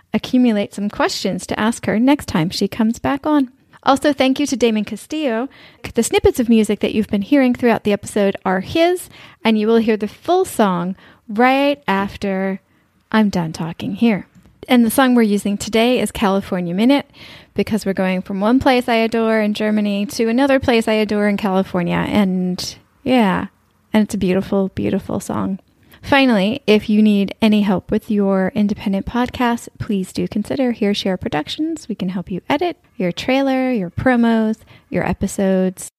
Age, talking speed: 10-29, 175 wpm